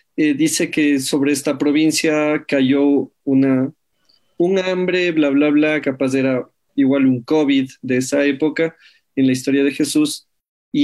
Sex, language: male, Spanish